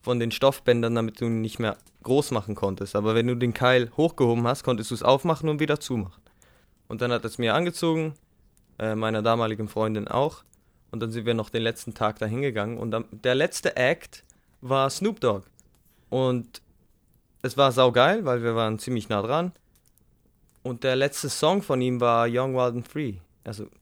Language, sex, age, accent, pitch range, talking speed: German, male, 20-39, German, 105-125 Hz, 190 wpm